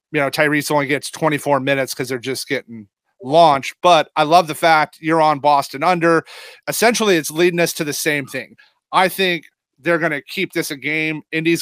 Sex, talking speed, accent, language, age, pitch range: male, 200 wpm, American, English, 40-59, 145-170 Hz